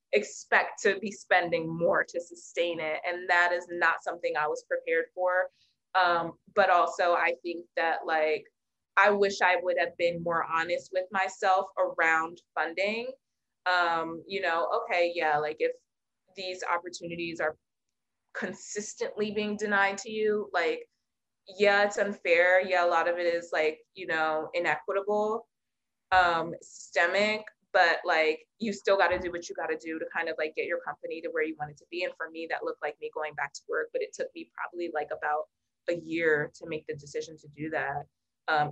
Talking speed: 190 wpm